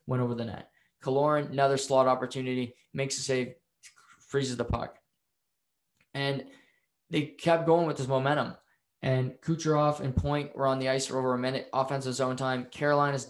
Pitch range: 130-150 Hz